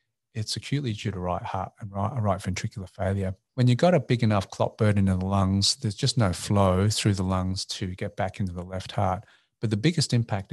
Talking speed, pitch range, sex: 230 wpm, 95-115 Hz, male